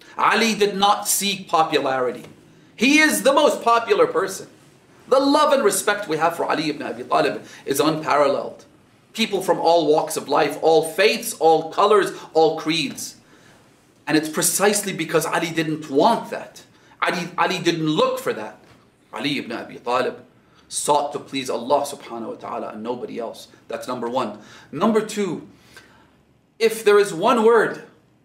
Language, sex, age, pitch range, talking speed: English, male, 30-49, 155-225 Hz, 155 wpm